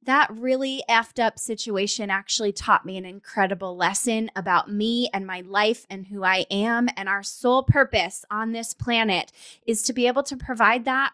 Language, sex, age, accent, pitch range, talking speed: English, female, 20-39, American, 200-250 Hz, 185 wpm